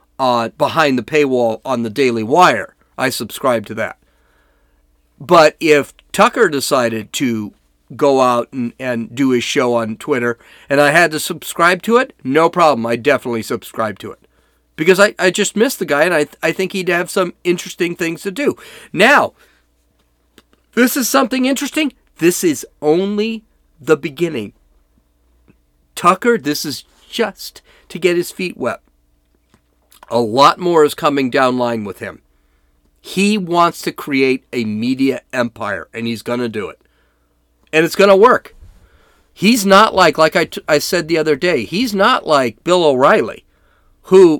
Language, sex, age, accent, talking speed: English, male, 40-59, American, 165 wpm